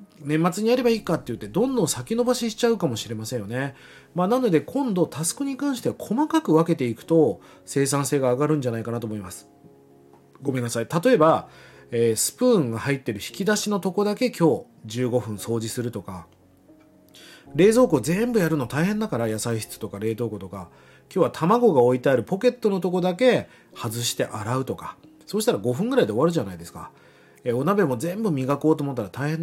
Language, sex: Japanese, male